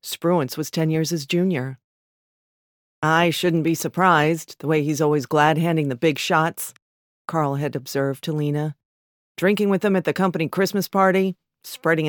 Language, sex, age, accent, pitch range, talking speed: English, female, 40-59, American, 150-190 Hz, 160 wpm